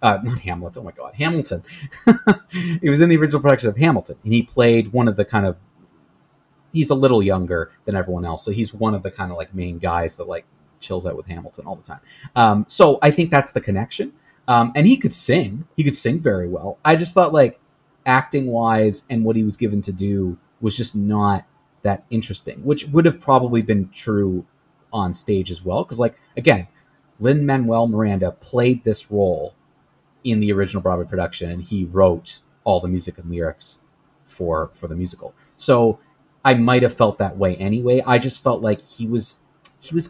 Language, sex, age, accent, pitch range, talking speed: English, male, 30-49, American, 95-140 Hz, 200 wpm